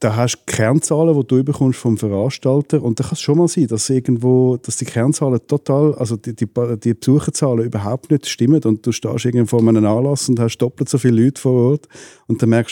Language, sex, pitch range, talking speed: German, male, 110-130 Hz, 230 wpm